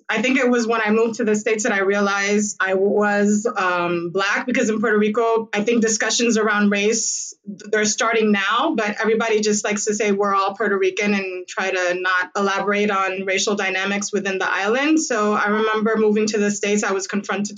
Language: English